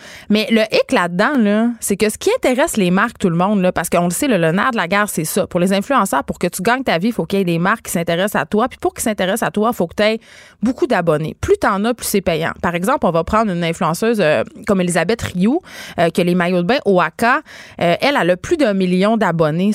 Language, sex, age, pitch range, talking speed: French, female, 30-49, 180-235 Hz, 285 wpm